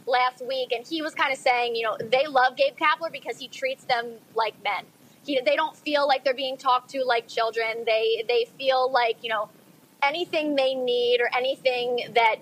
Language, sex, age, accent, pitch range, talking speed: English, female, 20-39, American, 225-285 Hz, 210 wpm